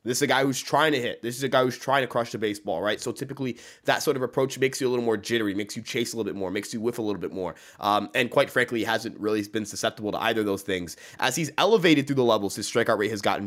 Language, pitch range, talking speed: English, 110-140 Hz, 310 wpm